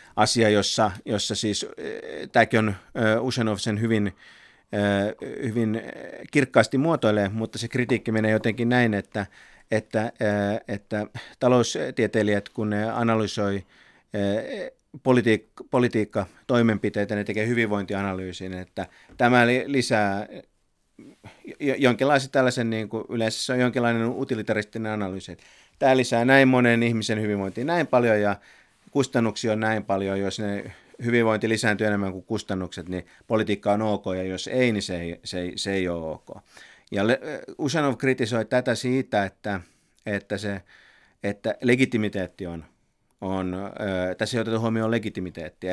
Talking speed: 125 wpm